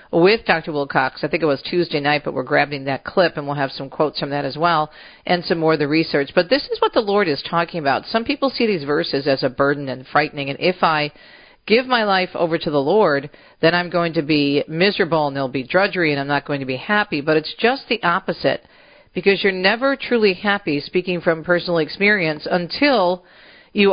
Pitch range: 150-195 Hz